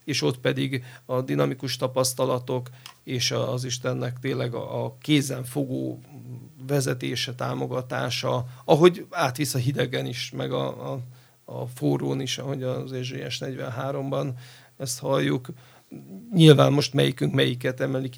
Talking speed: 130 wpm